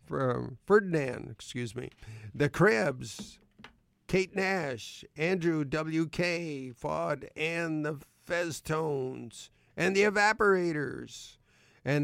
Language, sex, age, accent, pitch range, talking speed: English, male, 50-69, American, 130-185 Hz, 90 wpm